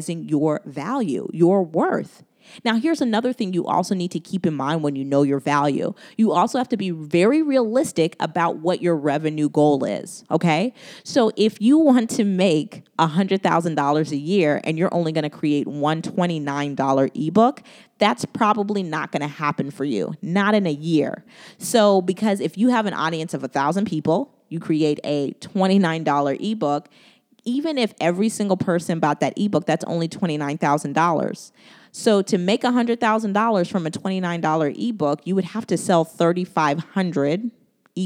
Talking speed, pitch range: 180 wpm, 155-215 Hz